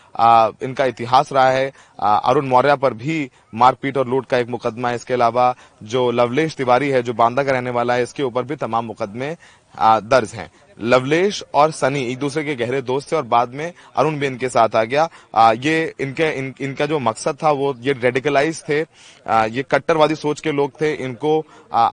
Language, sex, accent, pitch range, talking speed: Hindi, male, native, 115-140 Hz, 205 wpm